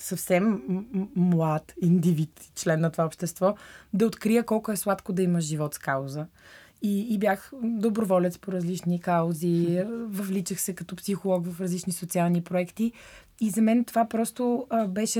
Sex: female